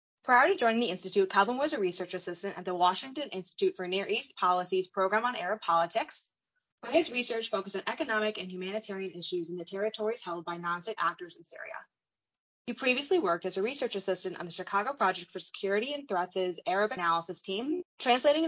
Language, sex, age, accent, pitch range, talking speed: English, female, 20-39, American, 185-235 Hz, 190 wpm